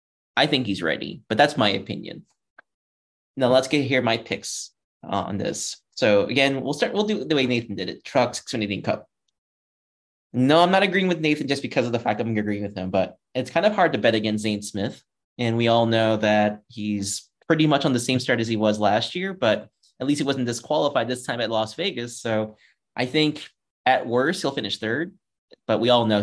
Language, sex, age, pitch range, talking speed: English, male, 20-39, 105-140 Hz, 215 wpm